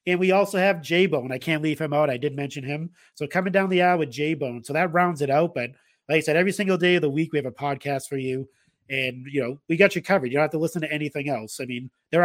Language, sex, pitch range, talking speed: English, male, 140-185 Hz, 295 wpm